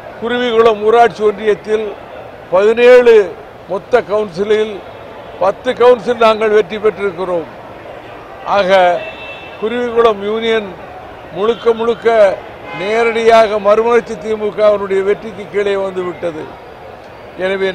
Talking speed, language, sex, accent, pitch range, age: 80 wpm, Tamil, male, native, 200-230 Hz, 60-79